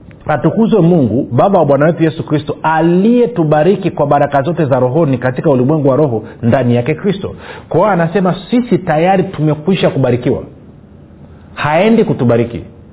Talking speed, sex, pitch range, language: 135 wpm, male, 135-185 Hz, Swahili